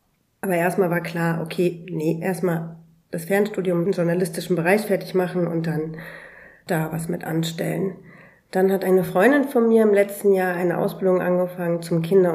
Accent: German